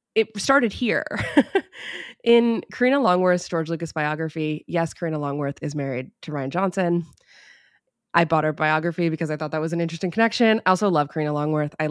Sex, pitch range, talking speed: female, 160-210 Hz, 175 wpm